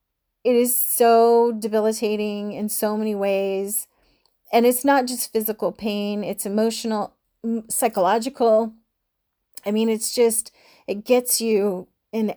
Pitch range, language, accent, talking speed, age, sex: 205-240 Hz, English, American, 120 wpm, 30-49, female